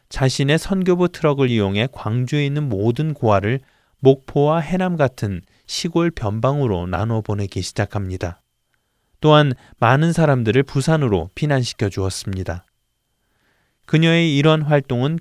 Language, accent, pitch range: Korean, native, 105-150 Hz